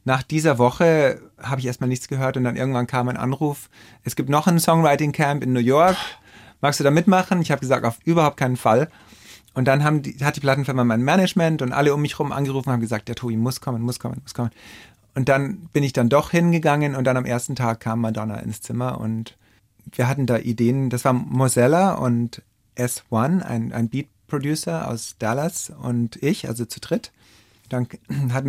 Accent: German